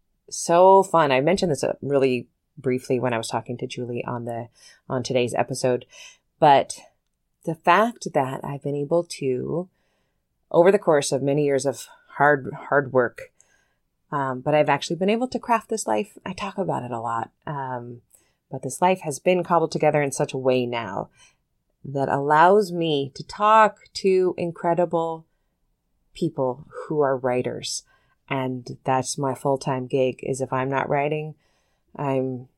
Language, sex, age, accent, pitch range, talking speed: English, female, 30-49, American, 130-175 Hz, 160 wpm